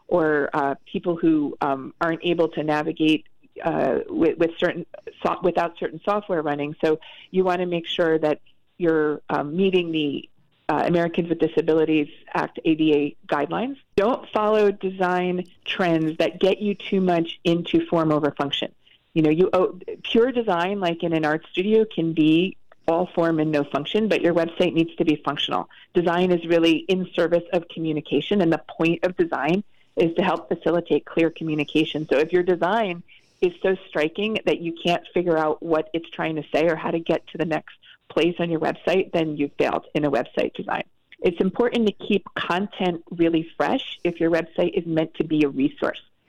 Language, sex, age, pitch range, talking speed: English, female, 40-59, 155-185 Hz, 185 wpm